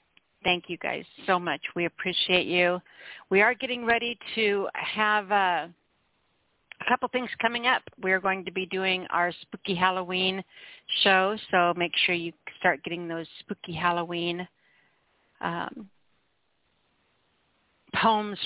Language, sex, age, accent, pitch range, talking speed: English, female, 50-69, American, 175-220 Hz, 135 wpm